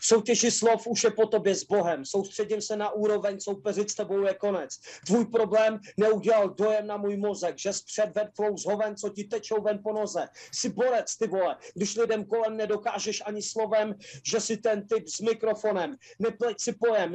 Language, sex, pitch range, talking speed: Czech, male, 205-230 Hz, 190 wpm